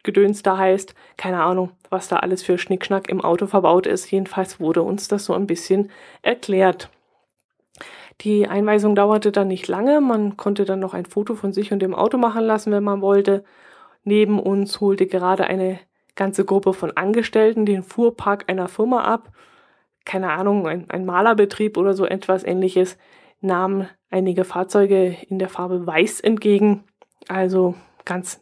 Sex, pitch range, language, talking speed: female, 185-210 Hz, German, 165 wpm